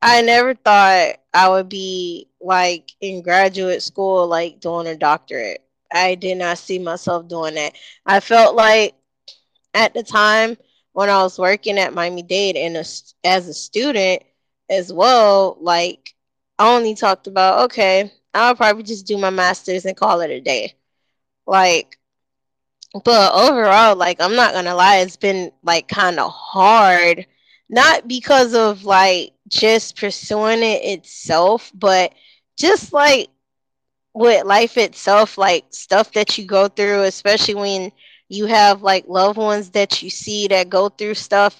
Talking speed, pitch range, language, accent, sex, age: 150 wpm, 185-220 Hz, English, American, female, 10-29